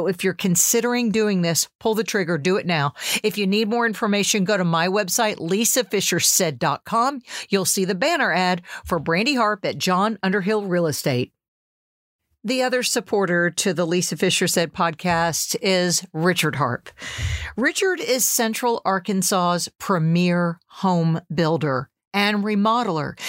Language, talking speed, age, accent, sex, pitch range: English, 140 wpm, 50-69, American, female, 175-225 Hz